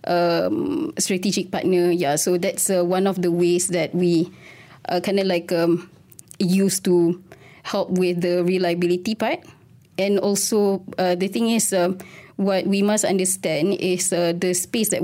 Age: 20-39